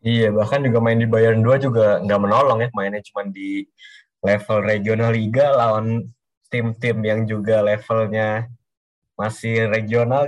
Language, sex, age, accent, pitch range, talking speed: Indonesian, male, 20-39, native, 110-135 Hz, 140 wpm